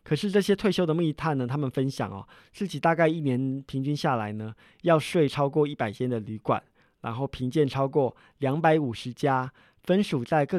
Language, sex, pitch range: Chinese, male, 125-155 Hz